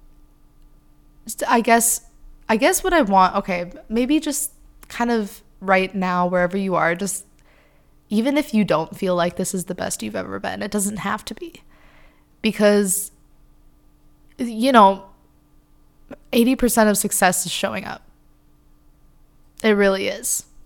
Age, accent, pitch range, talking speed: 20-39, American, 180-210 Hz, 140 wpm